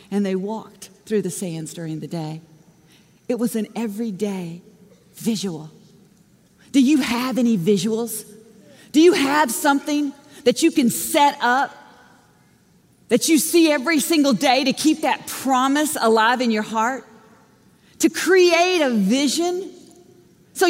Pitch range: 225-340 Hz